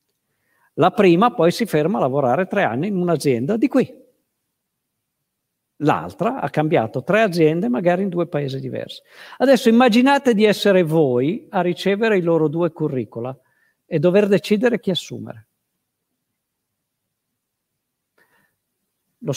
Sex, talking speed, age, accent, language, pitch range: male, 125 wpm, 50-69, native, Italian, 125-175 Hz